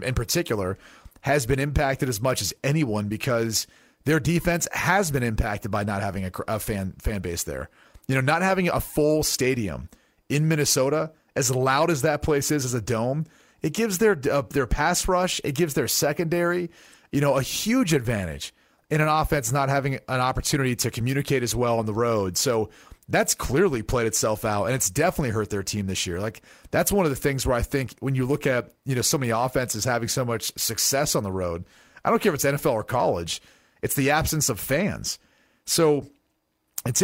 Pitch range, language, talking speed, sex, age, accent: 115-145 Hz, English, 205 wpm, male, 30-49, American